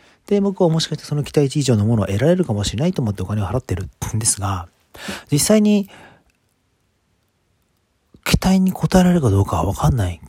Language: Japanese